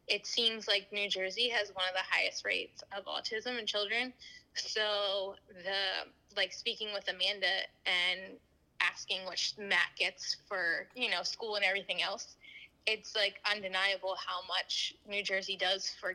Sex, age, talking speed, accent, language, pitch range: female, 10-29, 155 wpm, American, English, 200-230 Hz